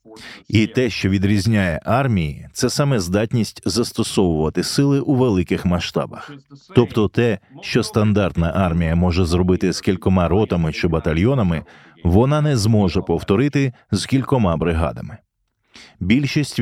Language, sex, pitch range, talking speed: Ukrainian, male, 90-115 Hz, 125 wpm